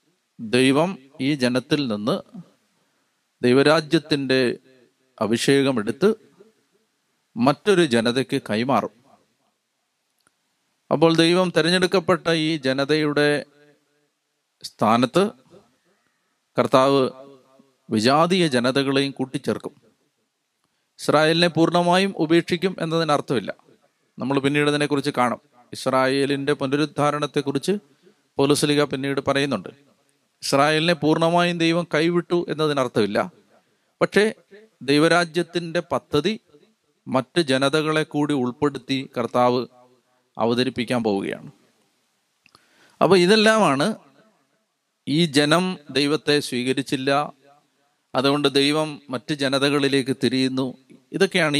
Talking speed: 70 wpm